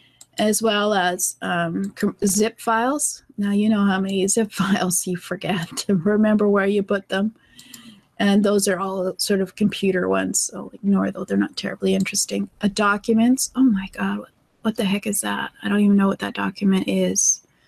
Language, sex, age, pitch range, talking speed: English, female, 30-49, 190-225 Hz, 180 wpm